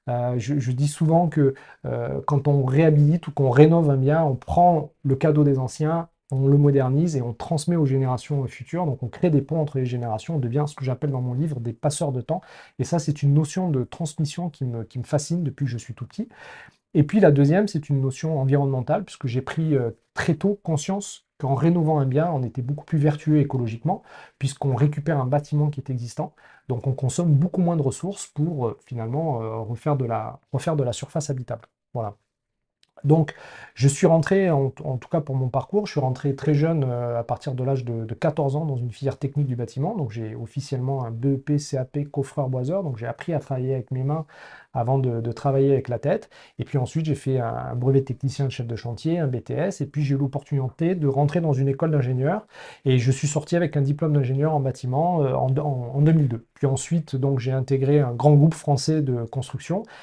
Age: 40-59